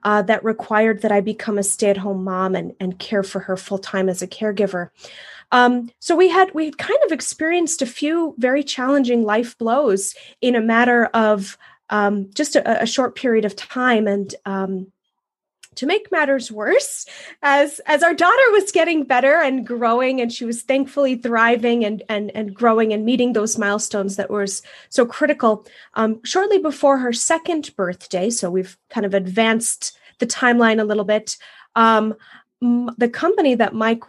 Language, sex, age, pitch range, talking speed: English, female, 20-39, 210-265 Hz, 175 wpm